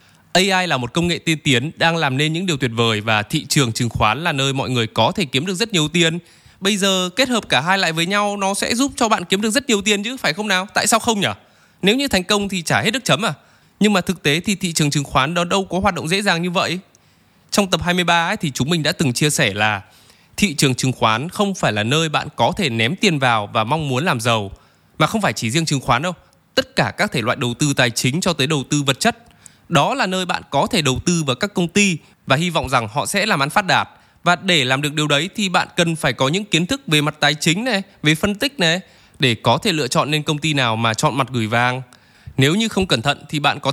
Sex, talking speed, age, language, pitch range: male, 285 wpm, 20-39, Vietnamese, 135-195 Hz